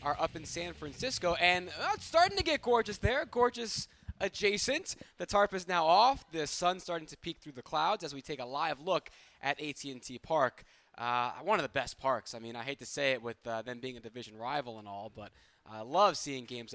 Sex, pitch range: male, 135-185 Hz